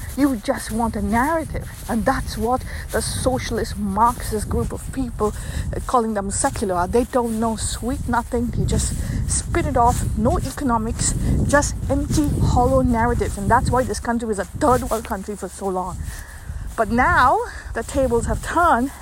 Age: 50-69